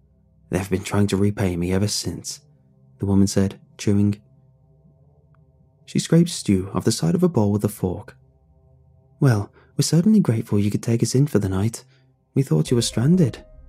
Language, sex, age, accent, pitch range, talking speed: English, male, 20-39, British, 100-135 Hz, 180 wpm